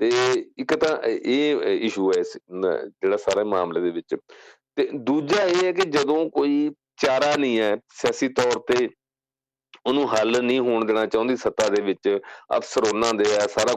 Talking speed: 170 wpm